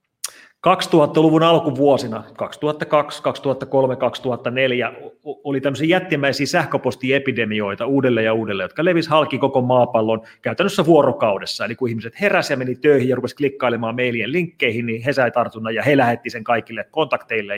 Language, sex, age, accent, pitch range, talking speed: Finnish, male, 30-49, native, 120-155 Hz, 140 wpm